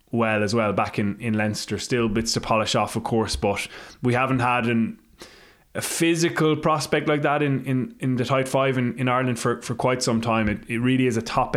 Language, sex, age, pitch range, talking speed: English, male, 20-39, 105-125 Hz, 230 wpm